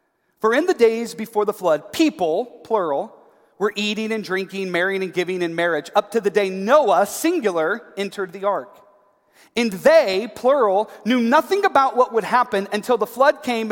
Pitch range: 205-305 Hz